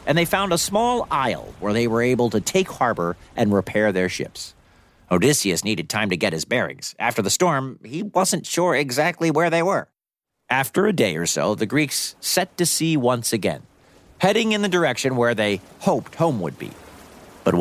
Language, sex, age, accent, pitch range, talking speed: English, male, 50-69, American, 105-170 Hz, 195 wpm